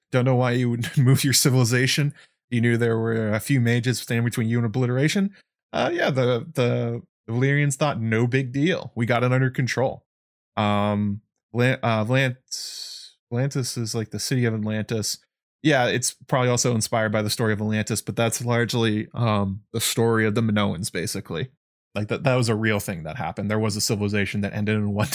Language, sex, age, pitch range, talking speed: English, male, 20-39, 110-130 Hz, 195 wpm